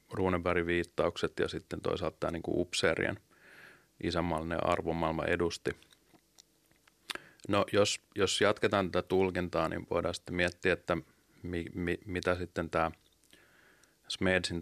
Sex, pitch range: male, 85-95 Hz